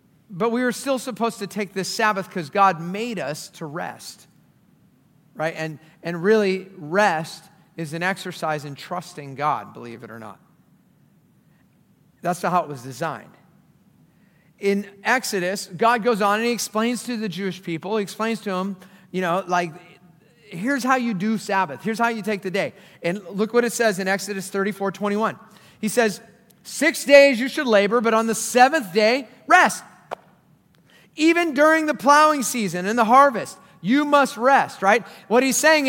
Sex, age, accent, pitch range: male, 40-59, American, 180-240 Hz